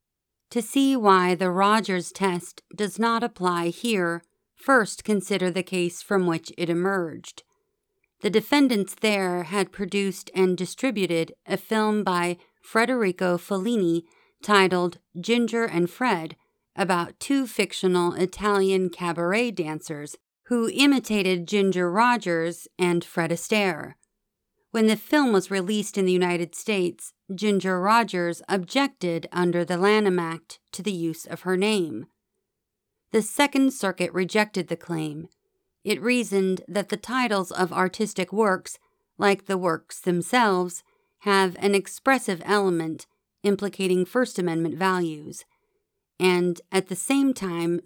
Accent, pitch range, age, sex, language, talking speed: American, 175-220 Hz, 40-59, female, English, 125 wpm